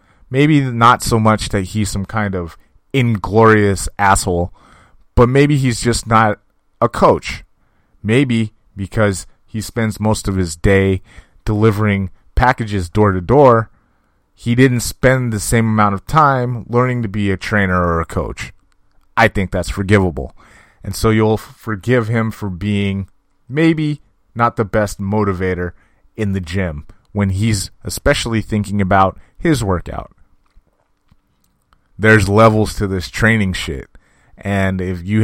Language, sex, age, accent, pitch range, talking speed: English, male, 30-49, American, 95-115 Hz, 140 wpm